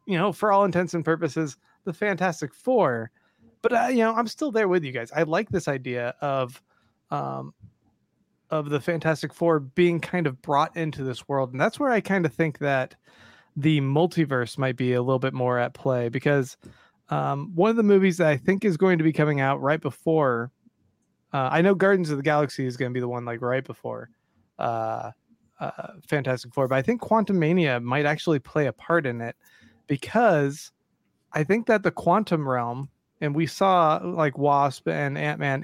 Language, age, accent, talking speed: English, 20-39, American, 200 wpm